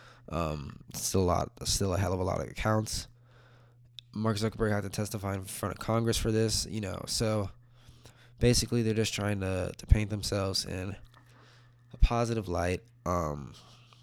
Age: 20-39